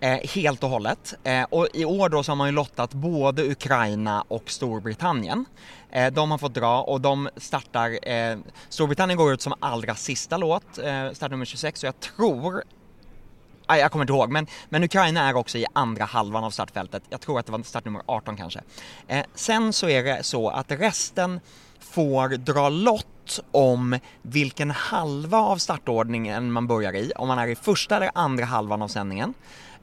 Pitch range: 115-150 Hz